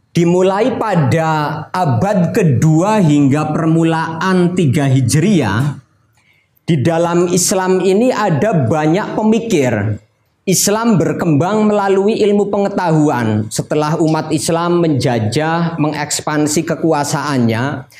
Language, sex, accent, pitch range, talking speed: Indonesian, male, native, 130-170 Hz, 85 wpm